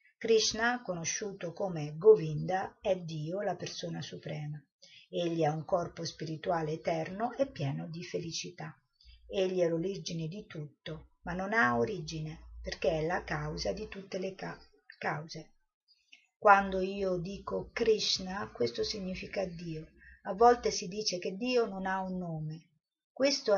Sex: female